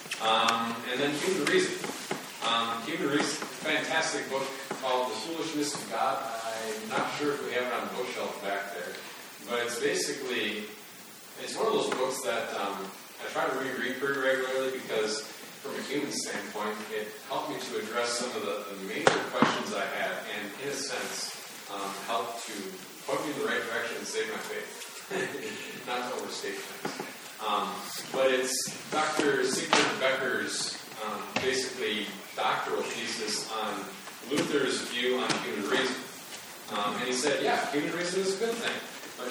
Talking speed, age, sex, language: 170 wpm, 30-49, male, English